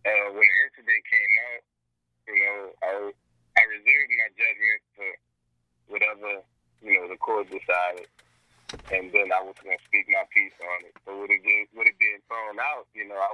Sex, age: male, 30-49